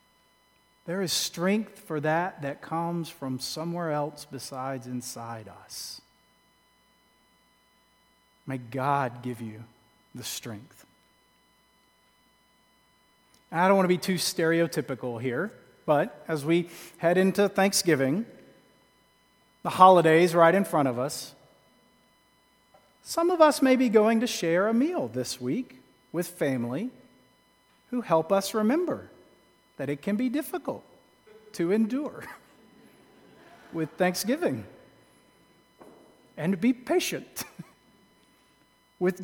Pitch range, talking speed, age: 135-200 Hz, 110 wpm, 40-59